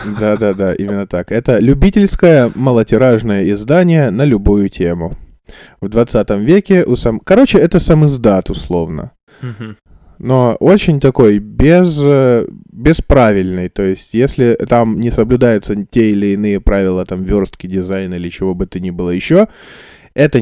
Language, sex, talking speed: Russian, male, 135 wpm